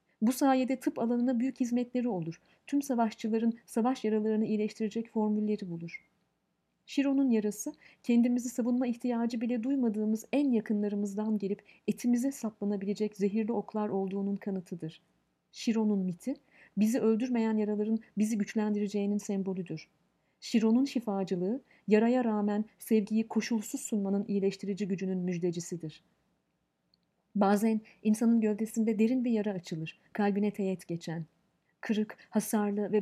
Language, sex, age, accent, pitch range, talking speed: Turkish, female, 40-59, native, 200-235 Hz, 110 wpm